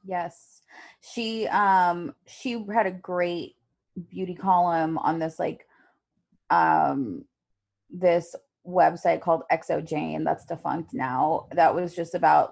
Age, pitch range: 20-39, 155-185 Hz